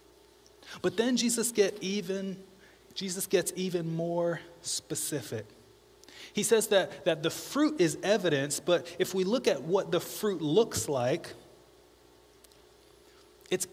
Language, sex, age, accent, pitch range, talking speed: English, male, 30-49, American, 150-220 Hz, 125 wpm